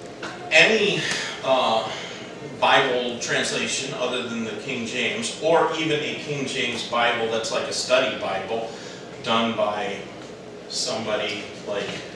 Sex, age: male, 40-59